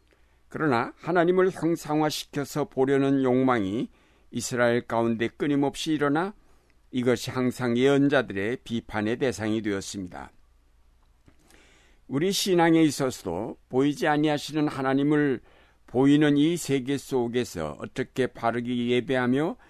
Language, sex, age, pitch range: Korean, male, 60-79, 100-140 Hz